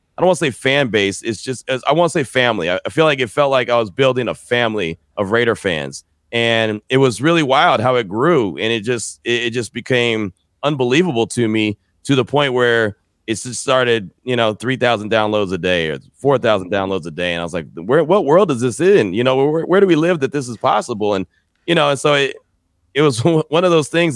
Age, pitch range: 30-49, 110-145 Hz